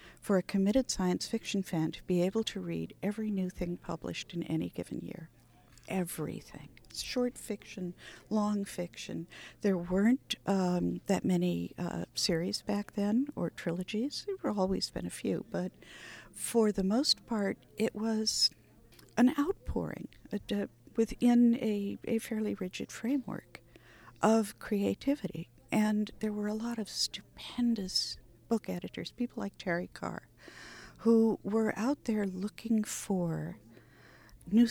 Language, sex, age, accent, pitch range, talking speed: English, female, 50-69, American, 170-220 Hz, 135 wpm